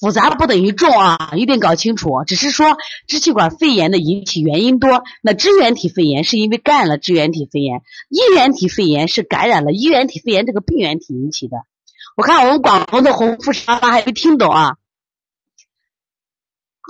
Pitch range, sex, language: 175-285 Hz, female, Chinese